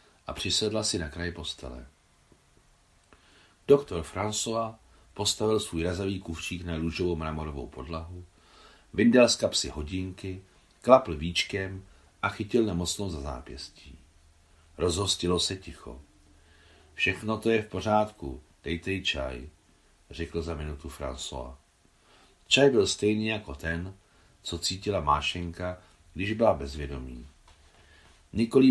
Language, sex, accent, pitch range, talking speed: Czech, male, native, 75-100 Hz, 115 wpm